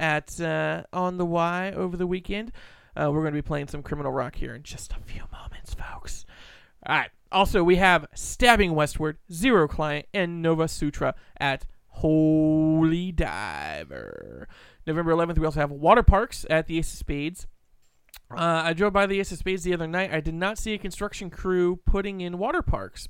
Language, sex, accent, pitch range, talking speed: English, male, American, 155-205 Hz, 190 wpm